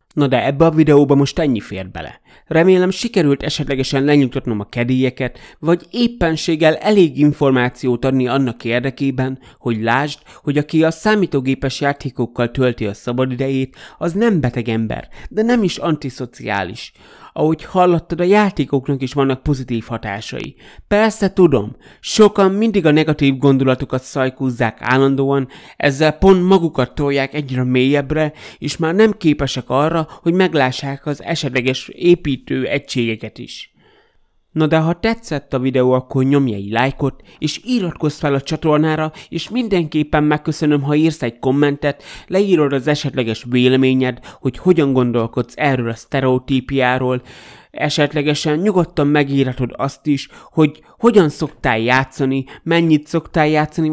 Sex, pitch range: male, 130-160 Hz